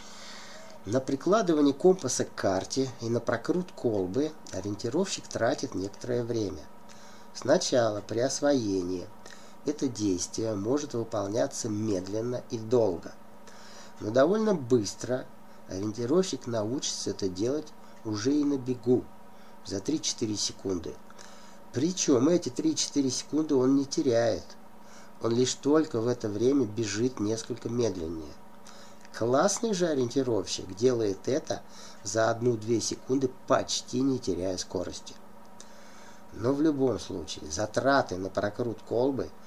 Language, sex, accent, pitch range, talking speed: Russian, male, native, 105-140 Hz, 110 wpm